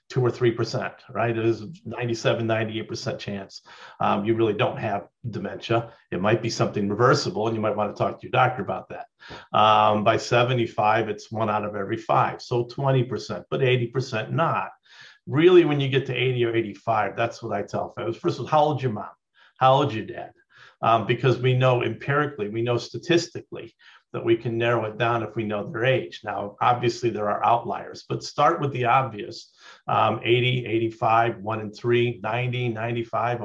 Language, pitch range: English, 110-125 Hz